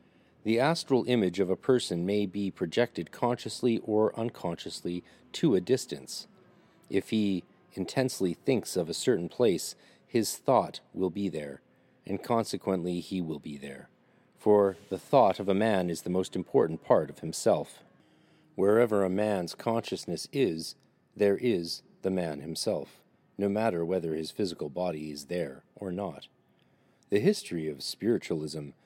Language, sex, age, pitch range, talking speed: English, male, 40-59, 85-105 Hz, 150 wpm